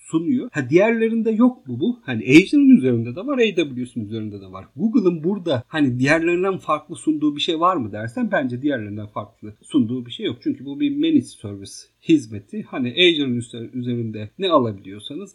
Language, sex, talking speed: Turkish, male, 170 wpm